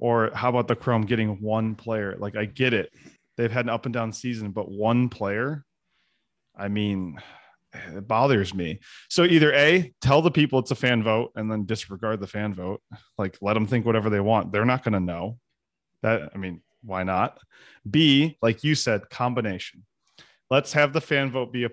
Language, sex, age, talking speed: English, male, 20-39, 200 wpm